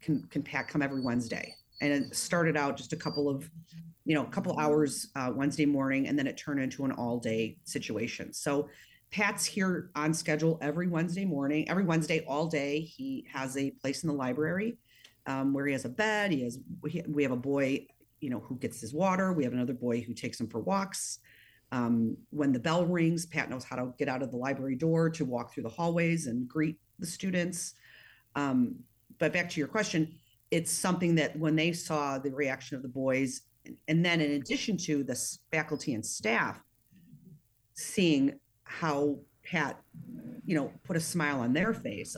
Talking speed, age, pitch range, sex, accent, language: 195 wpm, 40-59, 135-170 Hz, female, American, English